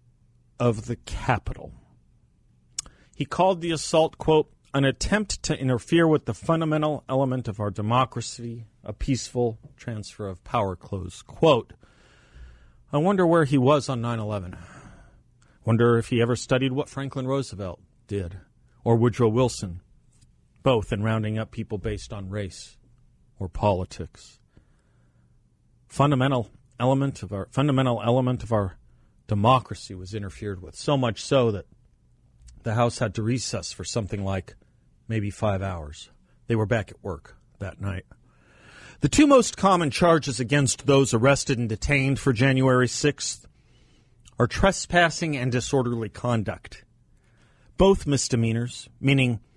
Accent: American